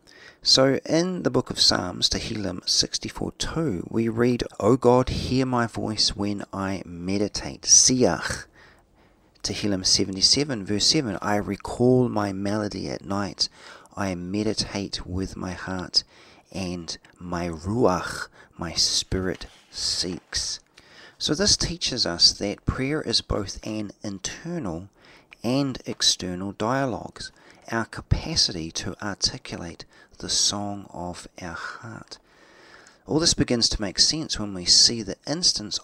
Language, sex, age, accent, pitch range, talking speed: English, male, 40-59, Australian, 95-115 Hz, 125 wpm